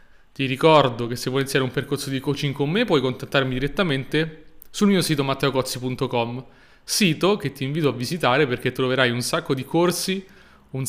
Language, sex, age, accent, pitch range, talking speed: Italian, male, 30-49, native, 130-160 Hz, 175 wpm